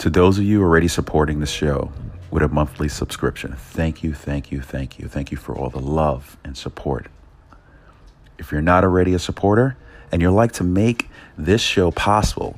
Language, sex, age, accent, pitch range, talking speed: English, male, 40-59, American, 75-95 Hz, 190 wpm